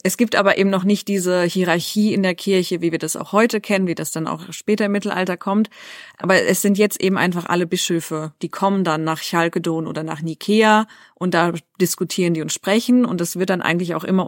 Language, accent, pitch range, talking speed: German, German, 165-200 Hz, 225 wpm